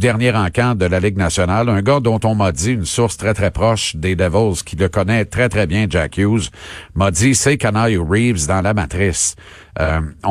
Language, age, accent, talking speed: French, 50-69, Canadian, 210 wpm